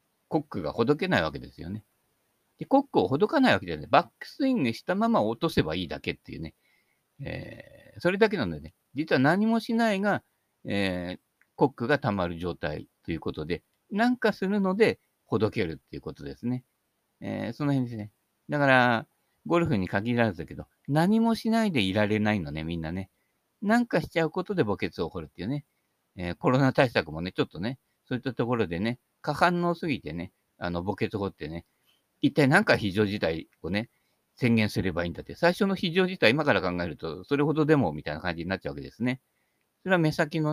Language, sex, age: Japanese, male, 50-69